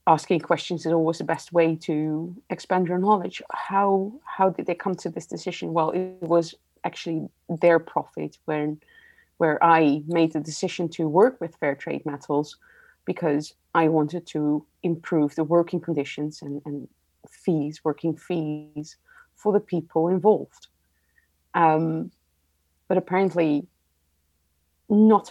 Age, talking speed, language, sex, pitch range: 30-49, 140 wpm, English, female, 150-175 Hz